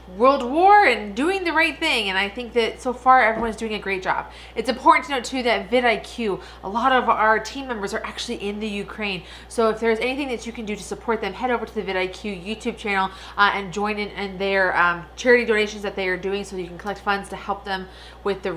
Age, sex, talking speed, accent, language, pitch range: 30-49, female, 250 wpm, American, English, 185-230 Hz